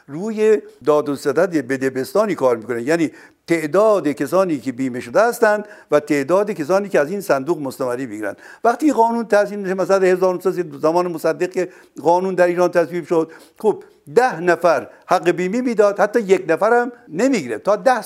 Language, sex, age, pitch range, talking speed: Persian, male, 60-79, 155-230 Hz, 155 wpm